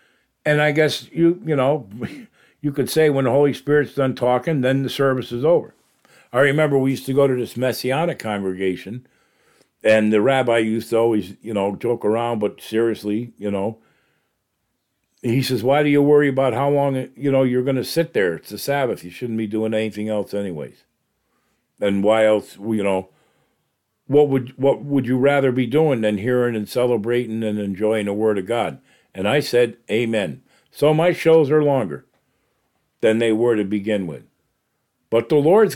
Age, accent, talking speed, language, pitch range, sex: 50-69, American, 185 wpm, English, 105-140 Hz, male